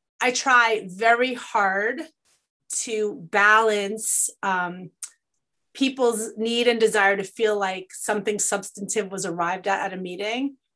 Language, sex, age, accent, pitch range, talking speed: English, female, 30-49, American, 195-240 Hz, 125 wpm